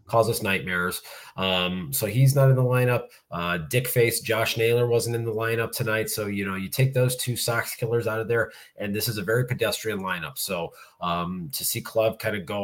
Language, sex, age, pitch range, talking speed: English, male, 30-49, 105-135 Hz, 225 wpm